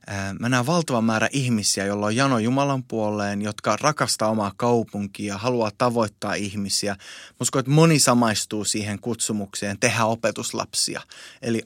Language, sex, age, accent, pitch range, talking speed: Finnish, male, 20-39, native, 105-125 Hz, 140 wpm